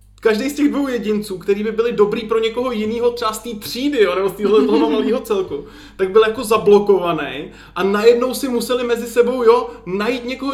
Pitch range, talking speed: 165-230 Hz, 190 wpm